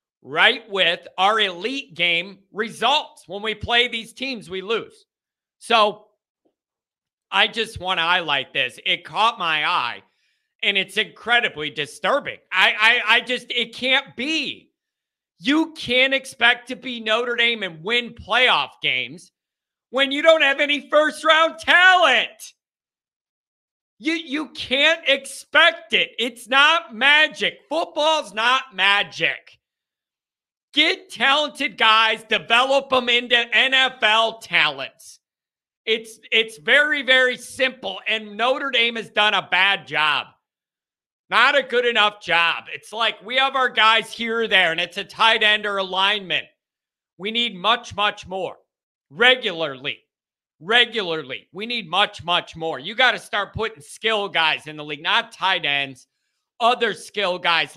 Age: 40-59